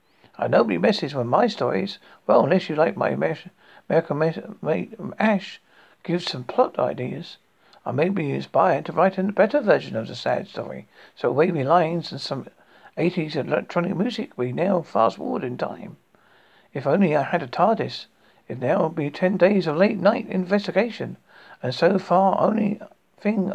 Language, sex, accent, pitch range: English, male, British, 165-205 Hz